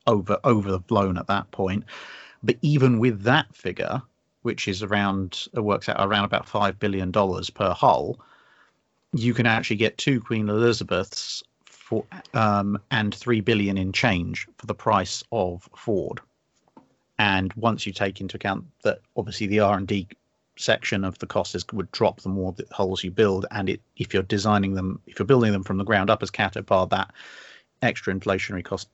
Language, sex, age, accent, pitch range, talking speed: English, male, 40-59, British, 100-120 Hz, 185 wpm